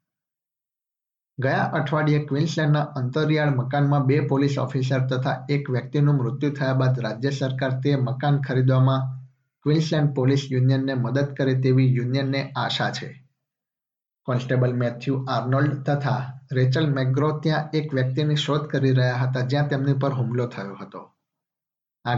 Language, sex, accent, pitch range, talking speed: Gujarati, male, native, 130-140 Hz, 125 wpm